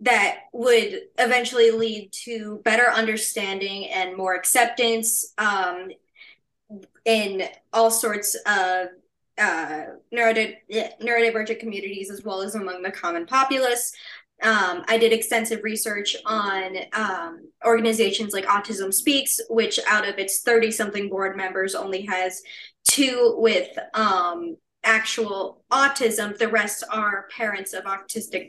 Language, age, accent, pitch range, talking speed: English, 20-39, American, 195-235 Hz, 120 wpm